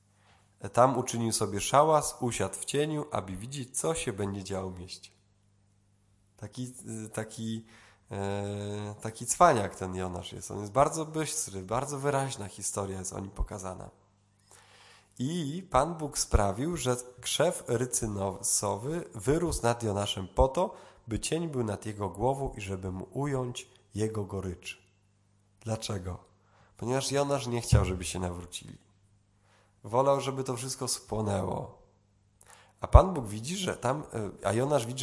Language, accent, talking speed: Polish, native, 135 wpm